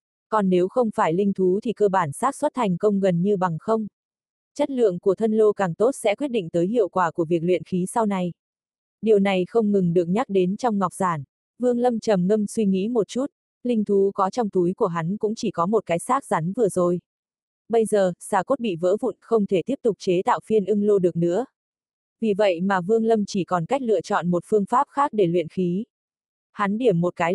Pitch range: 180-225 Hz